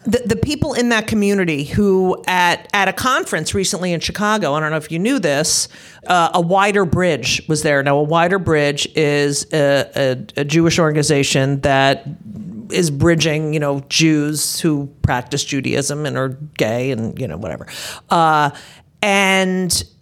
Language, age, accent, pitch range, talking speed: English, 50-69, American, 155-225 Hz, 165 wpm